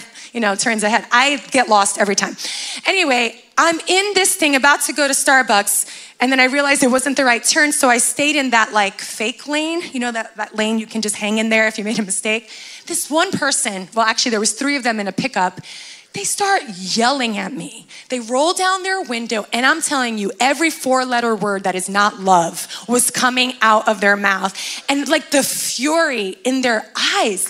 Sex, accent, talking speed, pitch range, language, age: female, American, 220 wpm, 220-310 Hz, English, 20-39